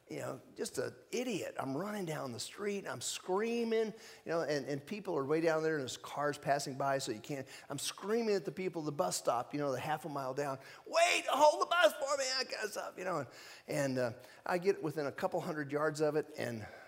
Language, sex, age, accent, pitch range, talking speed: English, male, 50-69, American, 110-150 Hz, 245 wpm